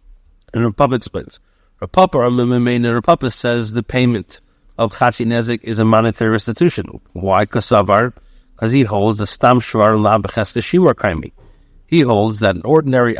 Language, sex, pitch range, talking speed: English, male, 105-135 Hz, 120 wpm